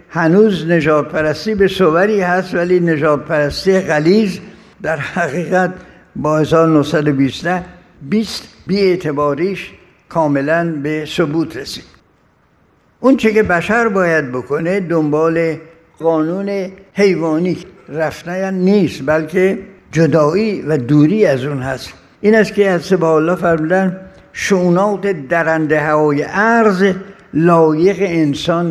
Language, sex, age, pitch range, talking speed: Persian, male, 60-79, 155-190 Hz, 105 wpm